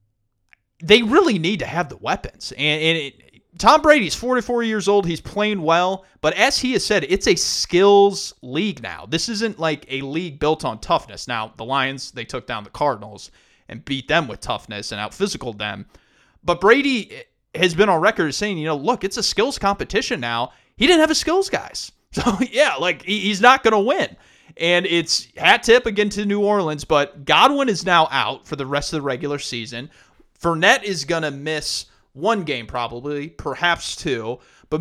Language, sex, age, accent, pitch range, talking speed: English, male, 30-49, American, 140-200 Hz, 195 wpm